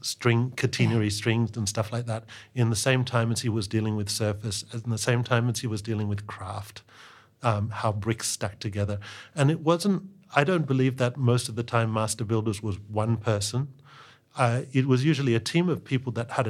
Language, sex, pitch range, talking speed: Danish, male, 110-130 Hz, 210 wpm